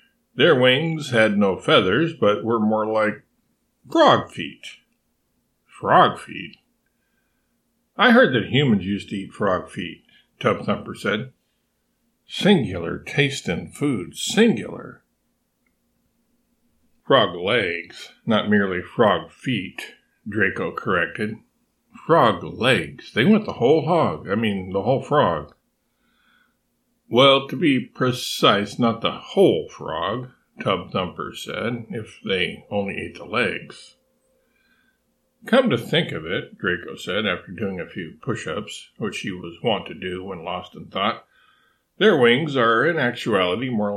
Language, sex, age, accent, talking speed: English, male, 60-79, American, 130 wpm